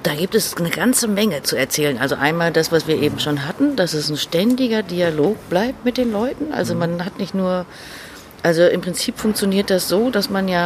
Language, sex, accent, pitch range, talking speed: German, female, German, 155-215 Hz, 220 wpm